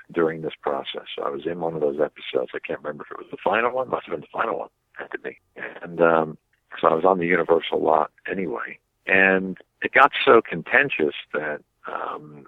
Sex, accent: male, American